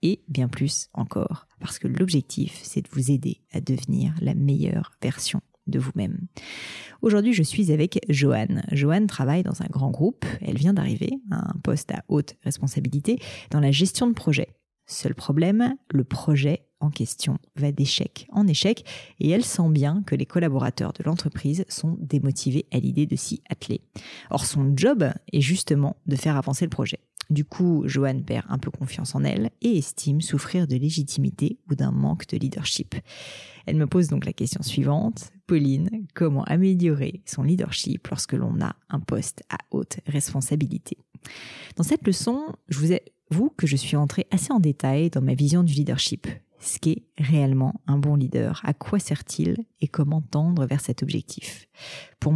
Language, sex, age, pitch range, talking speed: French, female, 30-49, 140-180 Hz, 175 wpm